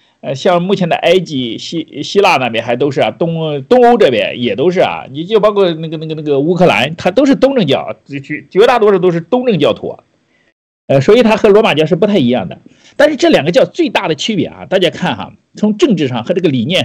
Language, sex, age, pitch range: Chinese, male, 50-69, 160-250 Hz